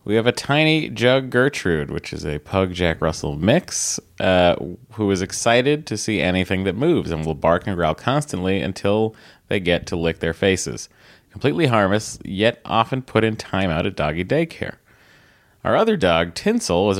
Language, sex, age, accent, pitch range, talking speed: English, male, 30-49, American, 85-115 Hz, 180 wpm